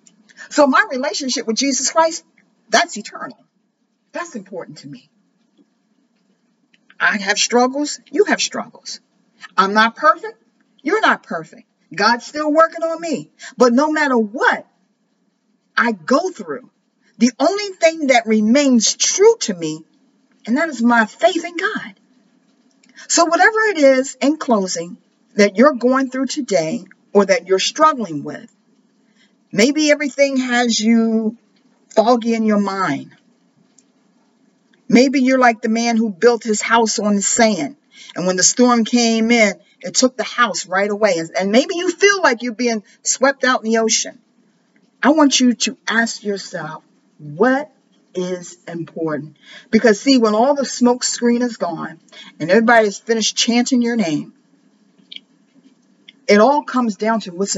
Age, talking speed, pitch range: 50-69, 145 wpm, 220-265 Hz